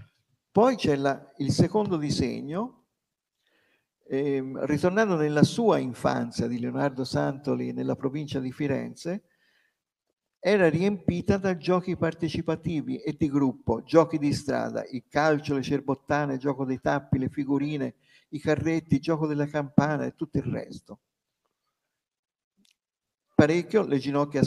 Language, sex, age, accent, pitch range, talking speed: Italian, male, 50-69, native, 135-175 Hz, 125 wpm